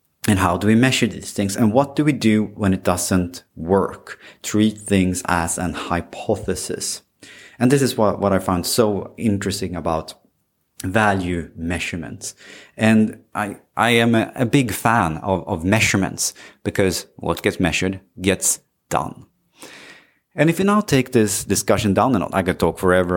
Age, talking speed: 30-49, 165 wpm